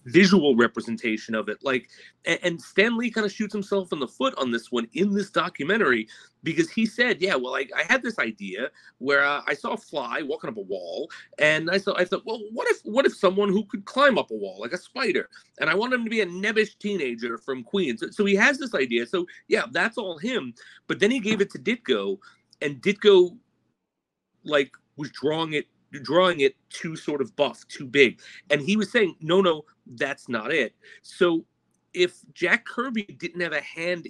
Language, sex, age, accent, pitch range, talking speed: English, male, 40-59, American, 140-220 Hz, 215 wpm